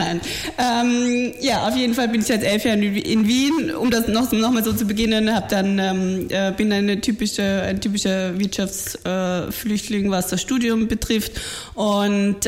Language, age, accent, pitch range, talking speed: German, 20-39, German, 195-230 Hz, 170 wpm